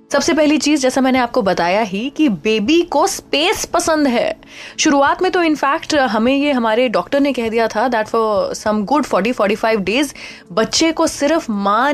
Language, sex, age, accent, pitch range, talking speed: Hindi, female, 20-39, native, 215-305 Hz, 180 wpm